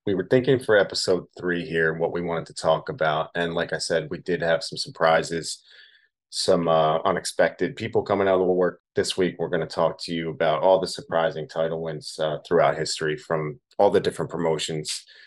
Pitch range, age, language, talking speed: 80-90 Hz, 30-49, English, 210 wpm